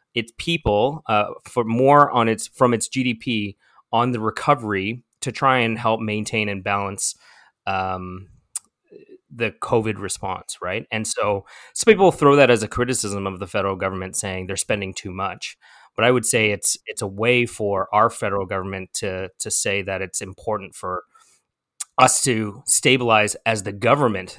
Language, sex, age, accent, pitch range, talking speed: English, male, 30-49, American, 100-120 Hz, 165 wpm